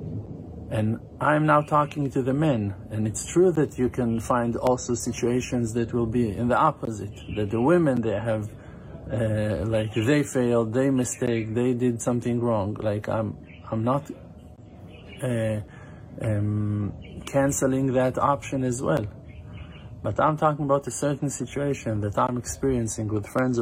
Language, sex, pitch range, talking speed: English, male, 105-125 Hz, 150 wpm